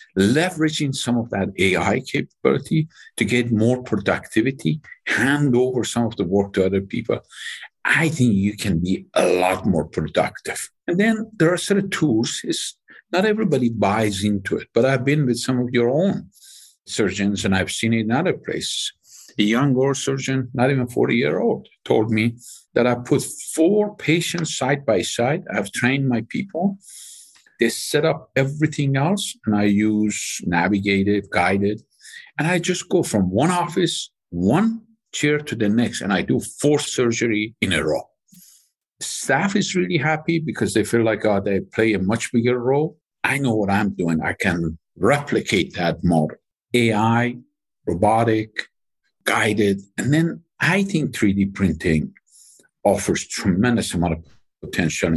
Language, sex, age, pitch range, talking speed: English, male, 50-69, 105-160 Hz, 165 wpm